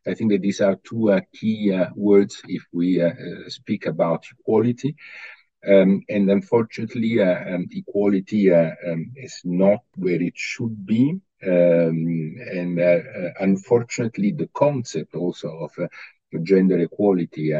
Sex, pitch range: male, 85-100 Hz